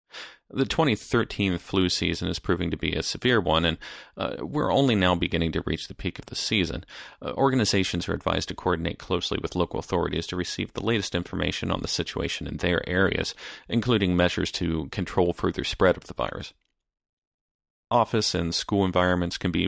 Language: English